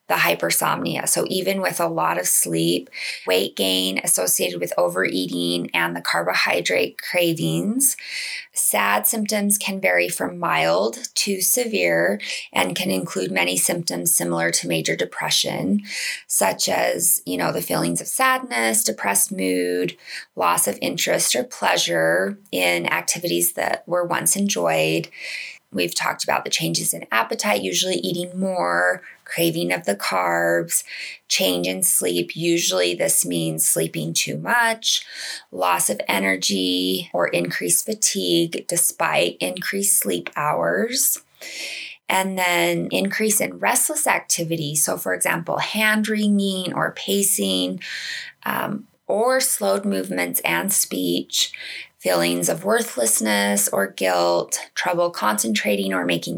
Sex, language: female, English